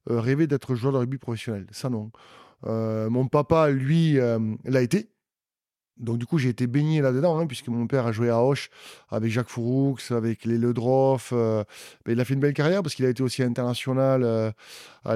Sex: male